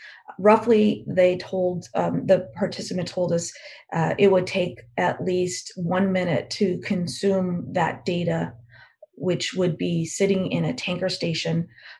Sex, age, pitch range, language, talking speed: female, 30-49, 165-190 Hz, English, 140 wpm